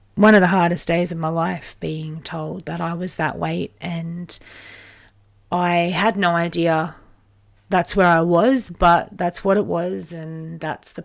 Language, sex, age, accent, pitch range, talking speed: English, female, 30-49, Australian, 150-175 Hz, 175 wpm